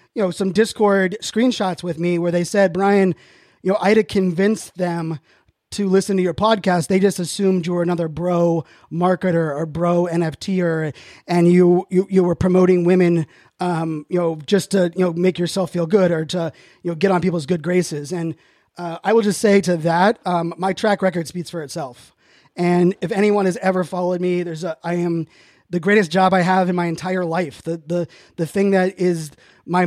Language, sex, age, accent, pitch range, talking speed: English, male, 20-39, American, 170-190 Hz, 210 wpm